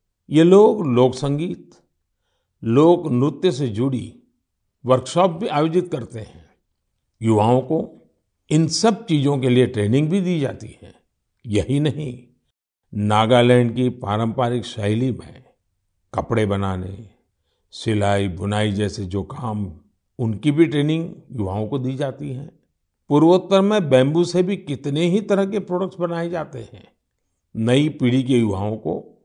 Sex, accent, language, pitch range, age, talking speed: male, native, Hindi, 105-160 Hz, 50-69, 135 wpm